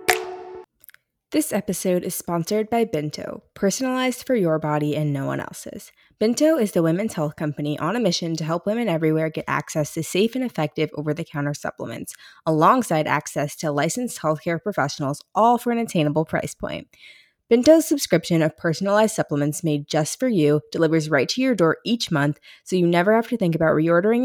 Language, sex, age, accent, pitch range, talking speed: English, female, 20-39, American, 155-225 Hz, 175 wpm